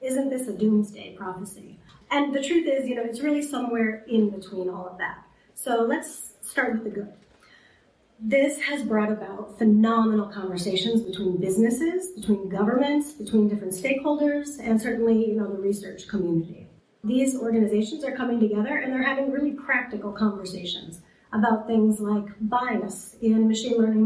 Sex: female